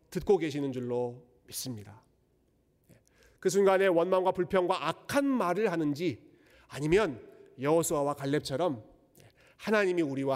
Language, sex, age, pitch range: Korean, male, 40-59, 130-185 Hz